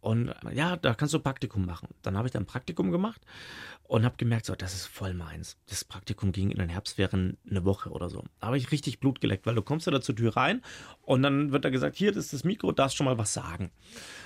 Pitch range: 100-135 Hz